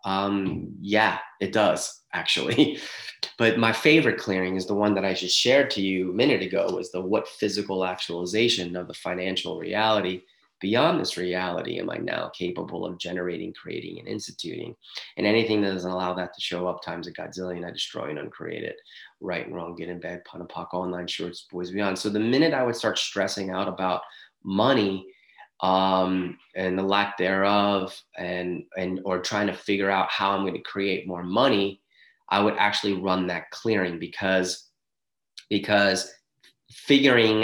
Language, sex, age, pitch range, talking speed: English, male, 30-49, 90-105 Hz, 175 wpm